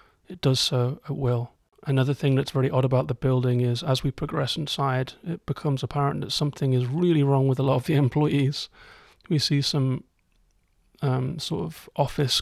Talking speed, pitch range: 190 wpm, 125-140 Hz